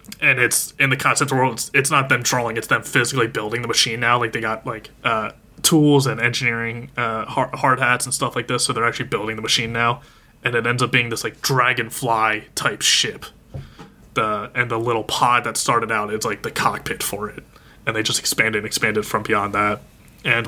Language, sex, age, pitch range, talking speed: English, male, 20-39, 115-135 Hz, 215 wpm